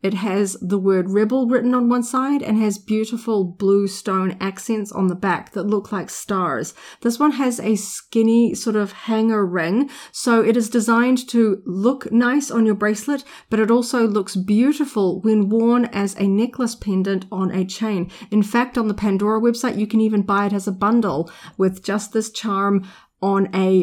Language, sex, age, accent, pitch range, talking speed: English, female, 40-59, Australian, 195-230 Hz, 190 wpm